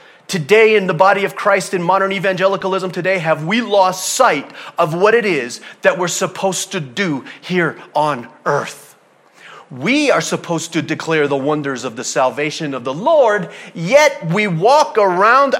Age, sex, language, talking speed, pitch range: 30-49, male, English, 165 wpm, 155-210 Hz